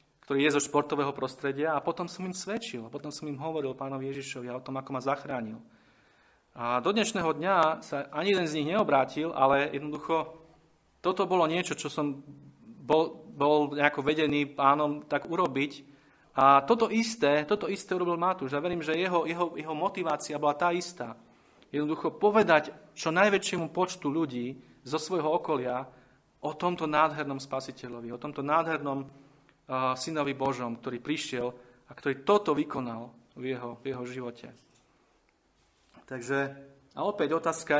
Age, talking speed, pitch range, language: 30-49, 155 wpm, 130-160 Hz, Slovak